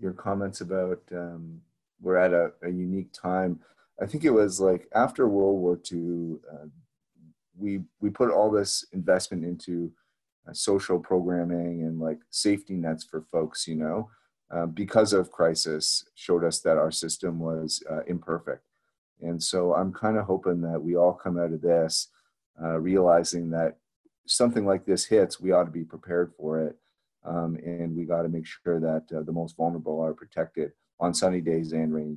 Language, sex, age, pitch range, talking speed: English, male, 30-49, 80-95 Hz, 180 wpm